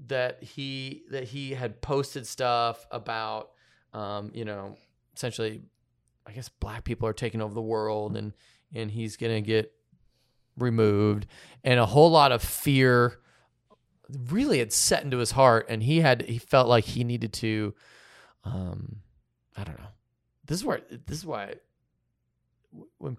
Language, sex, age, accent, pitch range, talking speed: English, male, 30-49, American, 105-125 Hz, 155 wpm